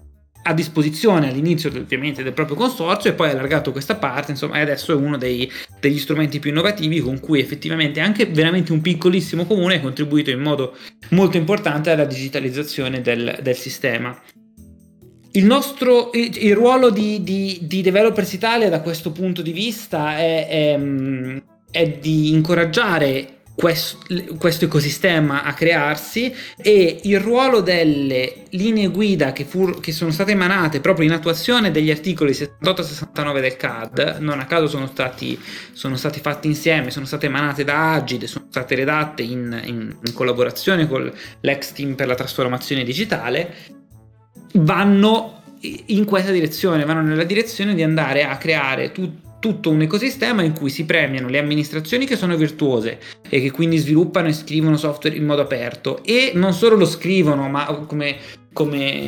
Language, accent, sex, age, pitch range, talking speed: Italian, native, male, 20-39, 140-175 Hz, 160 wpm